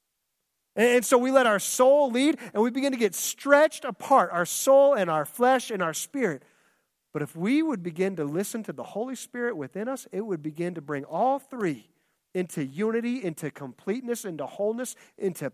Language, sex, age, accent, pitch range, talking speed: English, male, 40-59, American, 145-235 Hz, 190 wpm